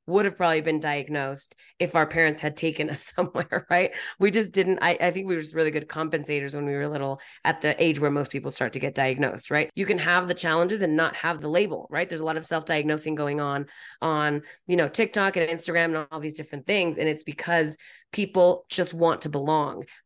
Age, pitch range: 20-39, 150-185 Hz